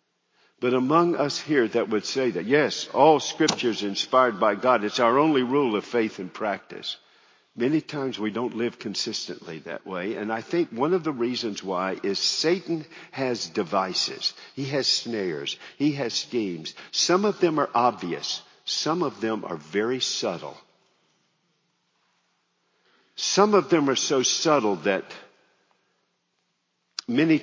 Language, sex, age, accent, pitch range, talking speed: English, male, 50-69, American, 115-165 Hz, 145 wpm